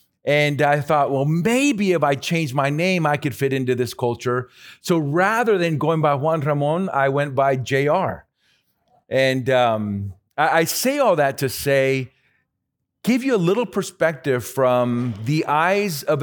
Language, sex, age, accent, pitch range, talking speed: English, male, 40-59, American, 115-155 Hz, 165 wpm